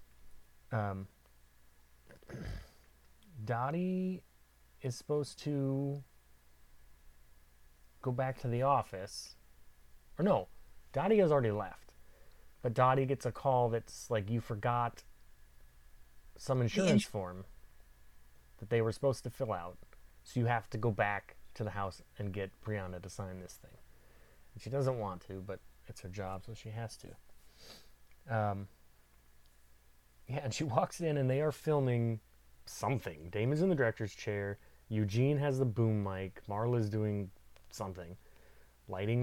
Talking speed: 135 wpm